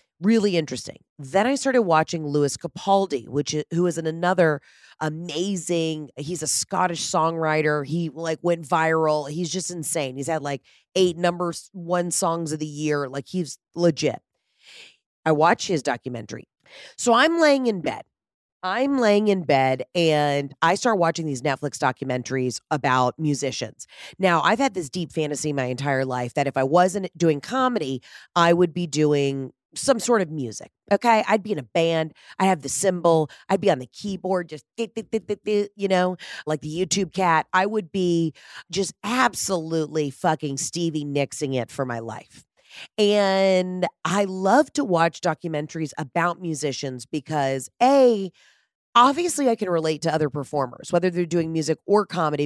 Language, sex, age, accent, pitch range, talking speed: English, female, 30-49, American, 145-185 Hz, 160 wpm